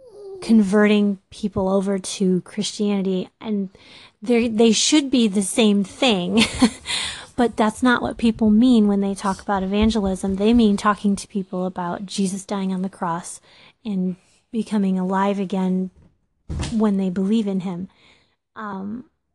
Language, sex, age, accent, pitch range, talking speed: English, female, 30-49, American, 195-230 Hz, 140 wpm